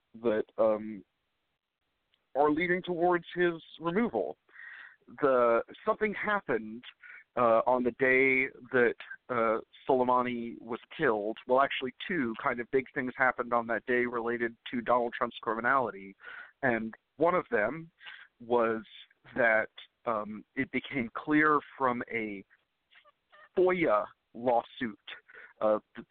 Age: 50-69